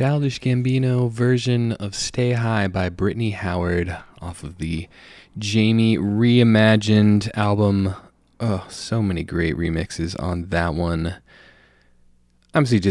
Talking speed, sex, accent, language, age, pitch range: 115 wpm, male, American, English, 20-39, 90-115 Hz